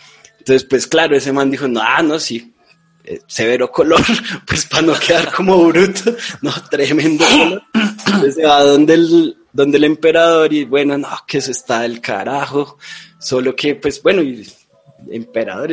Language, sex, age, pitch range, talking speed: Spanish, male, 20-39, 125-165 Hz, 155 wpm